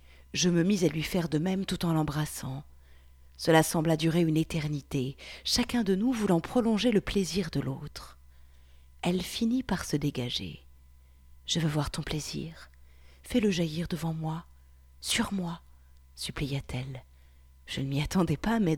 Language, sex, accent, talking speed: French, female, French, 155 wpm